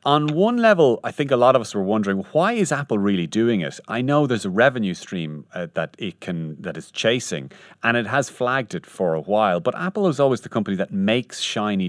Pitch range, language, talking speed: 90-125 Hz, English, 230 wpm